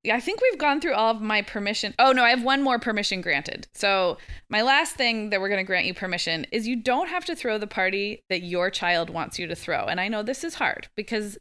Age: 20-39